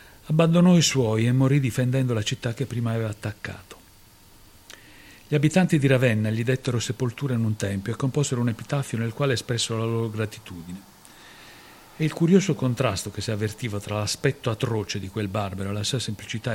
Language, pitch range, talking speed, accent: Italian, 105-130 Hz, 180 wpm, native